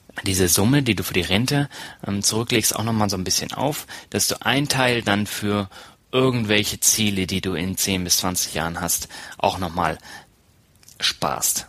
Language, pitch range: German, 95-115 Hz